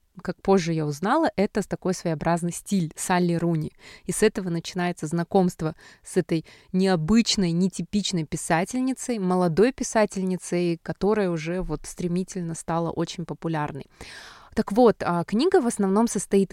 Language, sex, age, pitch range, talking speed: Russian, female, 20-39, 170-205 Hz, 130 wpm